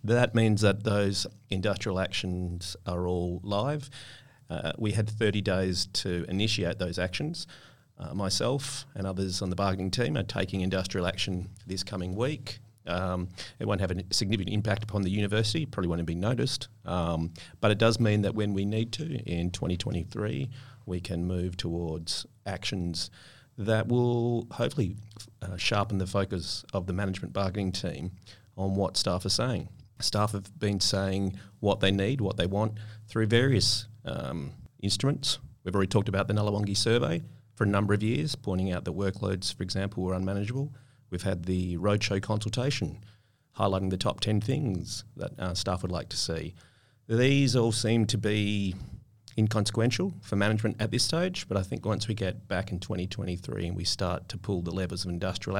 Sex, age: male, 30-49